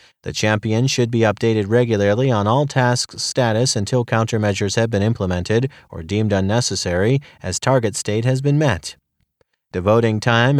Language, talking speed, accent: English, 145 wpm, American